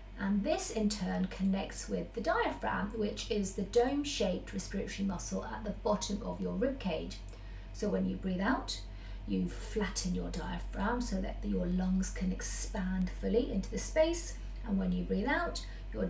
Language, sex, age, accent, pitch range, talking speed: English, female, 40-59, British, 180-225 Hz, 170 wpm